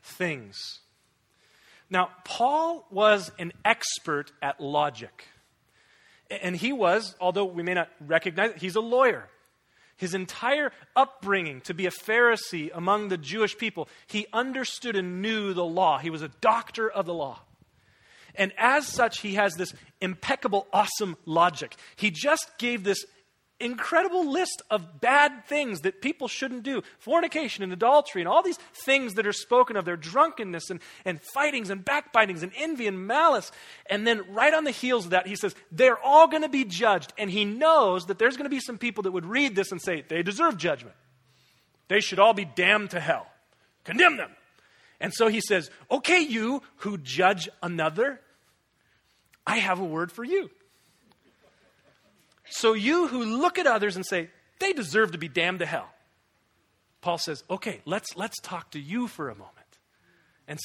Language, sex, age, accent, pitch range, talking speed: English, male, 30-49, American, 175-245 Hz, 170 wpm